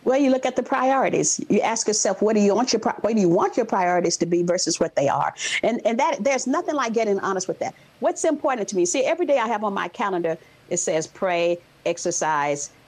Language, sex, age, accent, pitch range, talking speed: English, female, 50-69, American, 185-265 Hz, 240 wpm